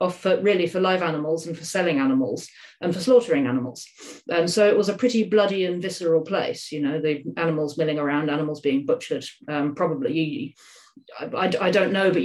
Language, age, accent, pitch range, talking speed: English, 40-59, British, 160-190 Hz, 185 wpm